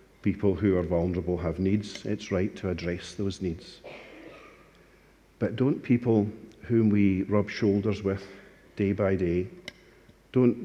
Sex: male